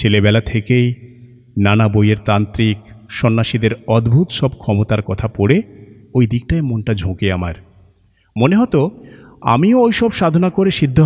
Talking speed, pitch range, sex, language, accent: 130 wpm, 100-135 Hz, male, Bengali, native